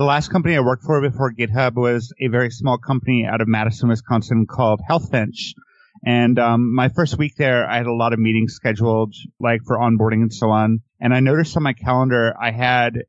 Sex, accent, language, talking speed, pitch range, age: male, American, English, 215 wpm, 115-135 Hz, 30-49